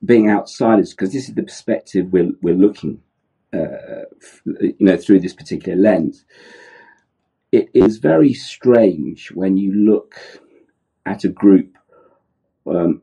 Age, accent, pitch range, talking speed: 50-69, British, 95-110 Hz, 135 wpm